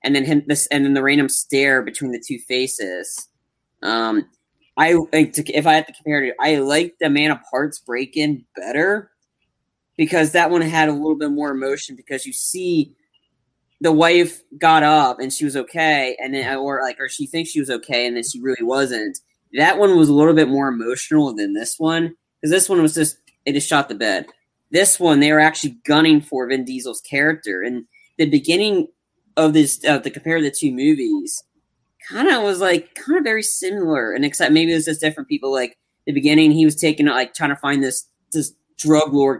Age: 20-39